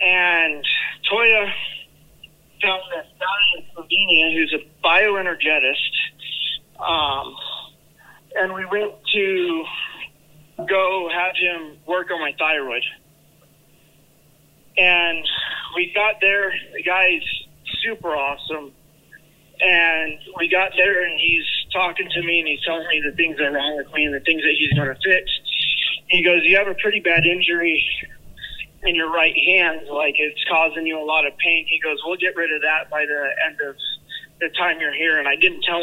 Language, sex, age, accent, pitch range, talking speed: English, male, 30-49, American, 155-185 Hz, 160 wpm